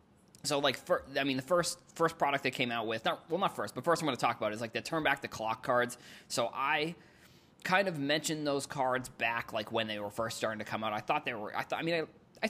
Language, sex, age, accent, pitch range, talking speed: English, male, 20-39, American, 115-155 Hz, 290 wpm